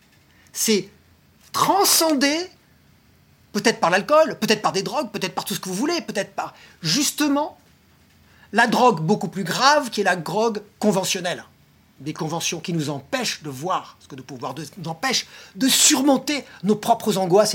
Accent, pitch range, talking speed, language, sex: French, 170-245 Hz, 170 wpm, French, male